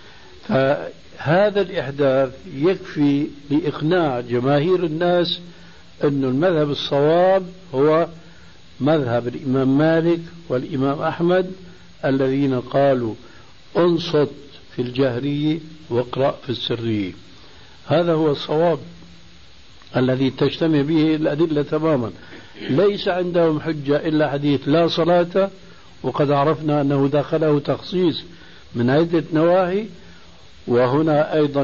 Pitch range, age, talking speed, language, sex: 130-165 Hz, 60-79, 90 wpm, Arabic, male